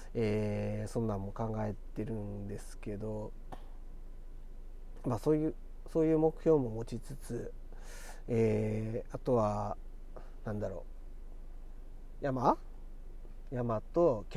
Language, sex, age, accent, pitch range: Japanese, male, 40-59, native, 110-135 Hz